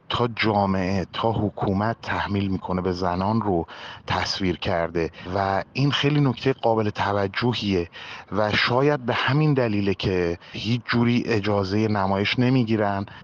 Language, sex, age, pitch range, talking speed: Persian, male, 30-49, 95-115 Hz, 125 wpm